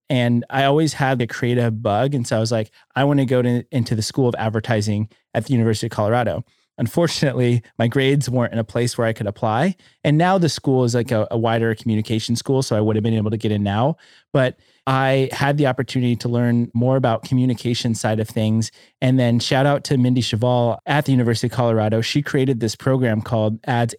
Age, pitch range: 30-49, 115-135 Hz